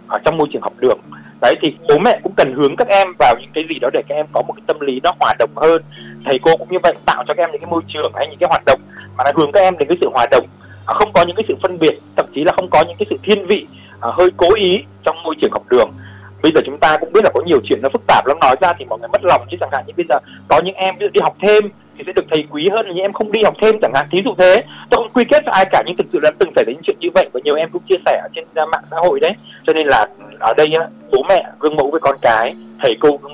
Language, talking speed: Vietnamese, 325 wpm